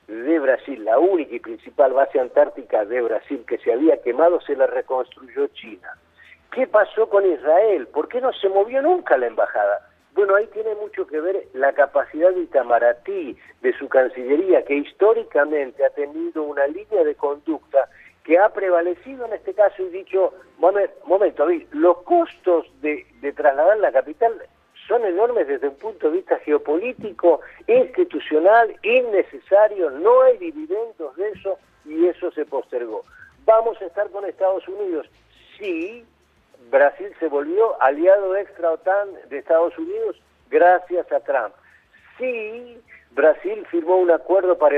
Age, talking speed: 50-69, 150 wpm